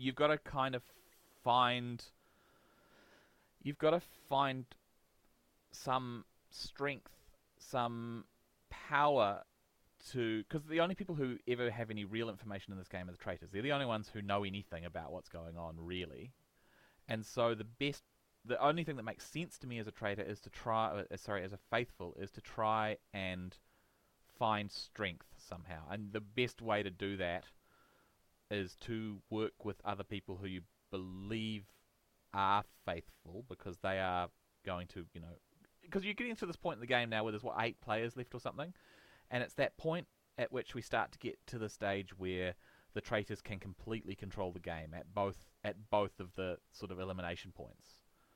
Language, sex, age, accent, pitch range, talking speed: English, male, 30-49, Australian, 90-115 Hz, 180 wpm